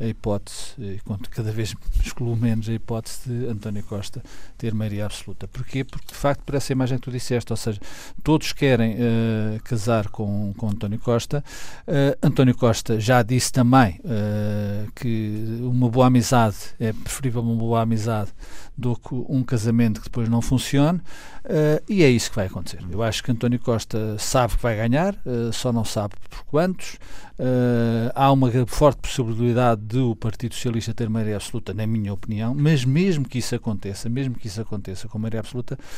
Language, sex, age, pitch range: Portuguese, male, 50-69, 110-130 Hz